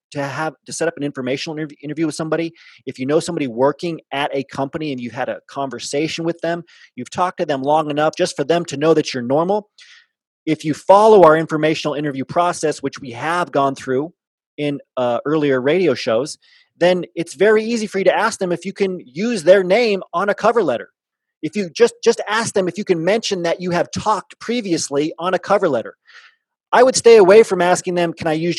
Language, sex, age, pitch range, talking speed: English, male, 30-49, 140-195 Hz, 220 wpm